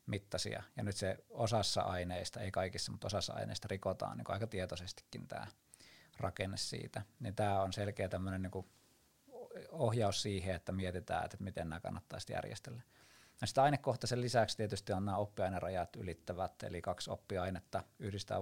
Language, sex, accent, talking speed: Finnish, male, native, 145 wpm